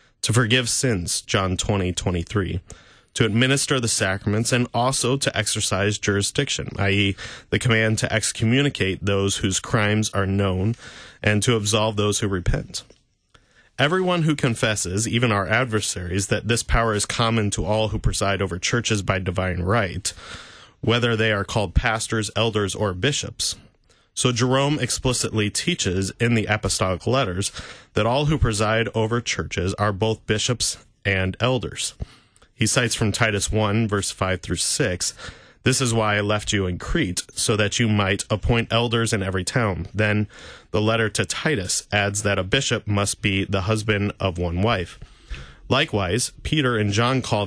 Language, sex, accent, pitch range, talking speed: English, male, American, 100-115 Hz, 160 wpm